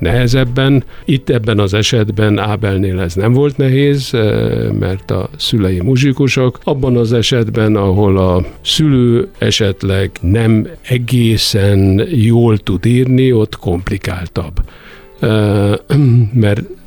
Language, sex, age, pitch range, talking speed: Hungarian, male, 60-79, 100-125 Hz, 105 wpm